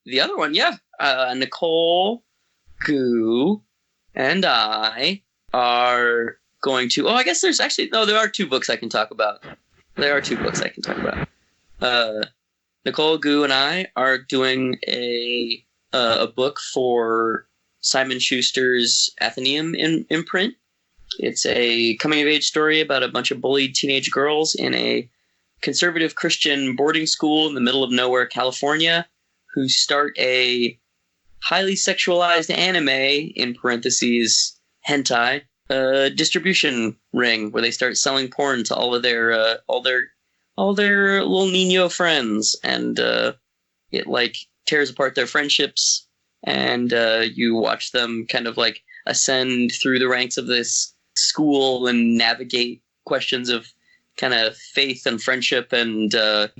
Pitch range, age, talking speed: 120-150 Hz, 20-39, 145 wpm